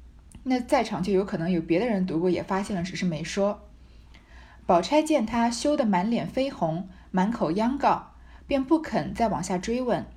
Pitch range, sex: 175-245 Hz, female